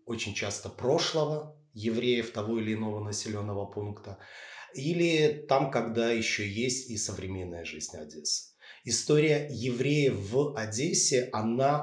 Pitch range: 110-140 Hz